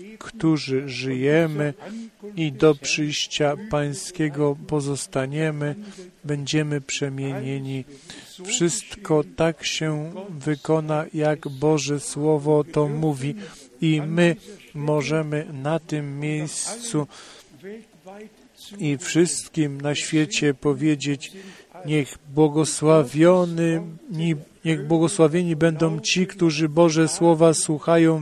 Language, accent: Polish, native